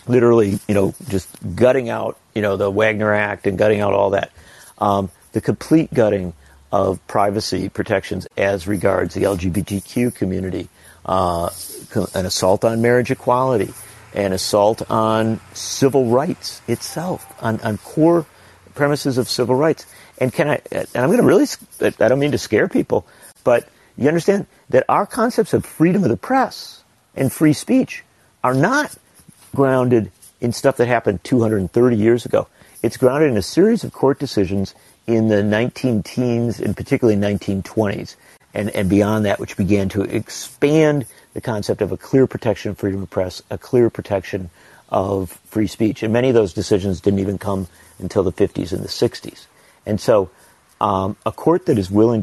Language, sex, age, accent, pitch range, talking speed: English, male, 50-69, American, 100-125 Hz, 170 wpm